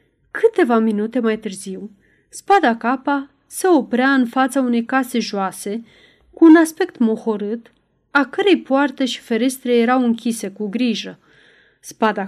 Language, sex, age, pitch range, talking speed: Romanian, female, 30-49, 215-285 Hz, 130 wpm